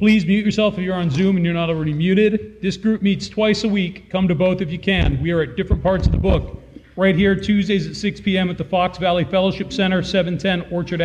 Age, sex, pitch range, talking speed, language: 40-59, male, 165-200 Hz, 250 wpm, English